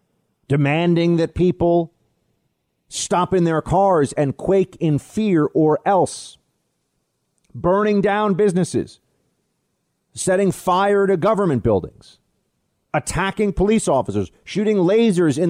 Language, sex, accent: English, male, American